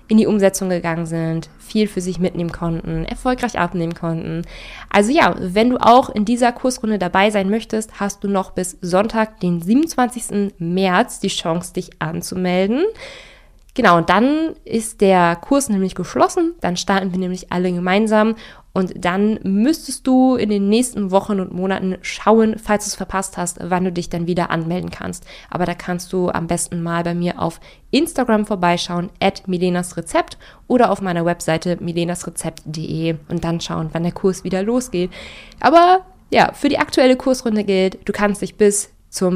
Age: 20-39